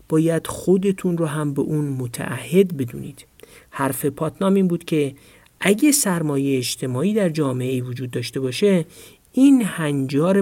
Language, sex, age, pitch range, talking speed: Persian, male, 50-69, 140-190 Hz, 140 wpm